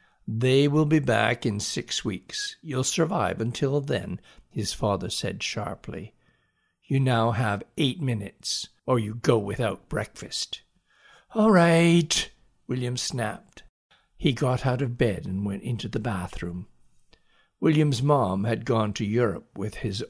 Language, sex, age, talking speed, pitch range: English, male, 60-79, 140 wpm, 110-140 Hz